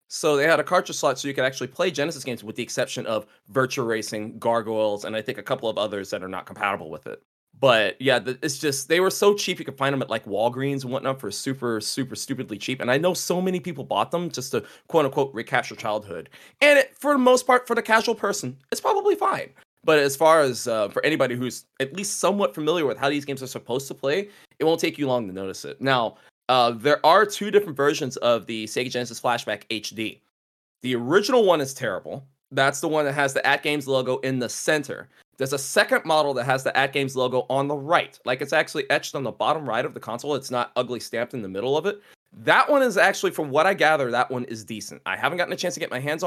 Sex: male